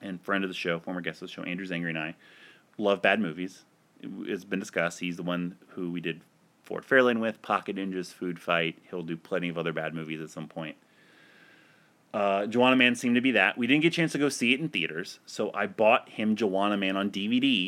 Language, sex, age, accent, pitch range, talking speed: English, male, 30-49, American, 90-125 Hz, 235 wpm